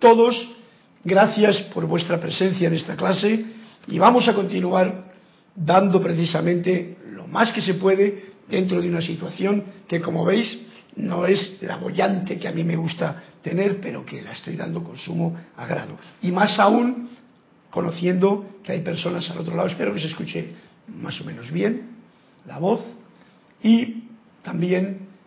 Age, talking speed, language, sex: 60-79, 155 wpm, Spanish, male